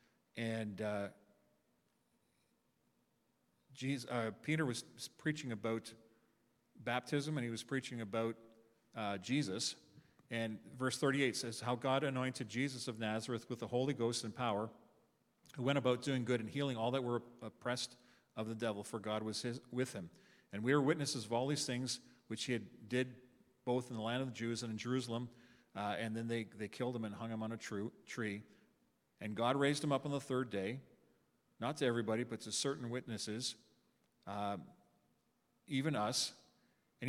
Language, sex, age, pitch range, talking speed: English, male, 40-59, 110-130 Hz, 175 wpm